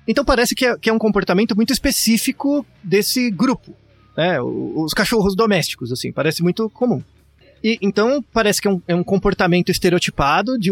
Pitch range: 170-240 Hz